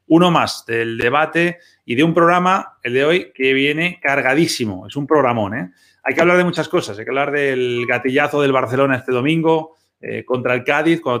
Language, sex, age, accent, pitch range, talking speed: Spanish, male, 30-49, Spanish, 120-150 Hz, 205 wpm